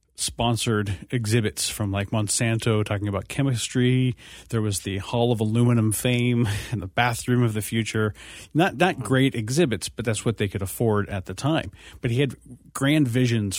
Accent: American